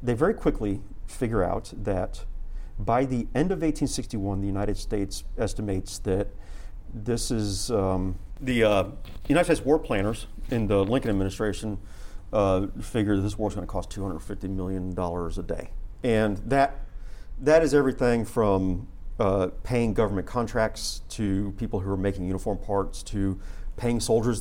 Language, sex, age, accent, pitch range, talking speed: English, male, 40-59, American, 90-110 Hz, 150 wpm